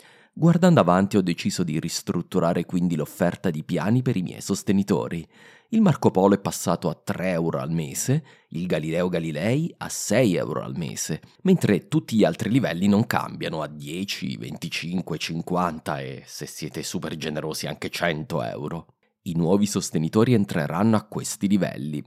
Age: 30-49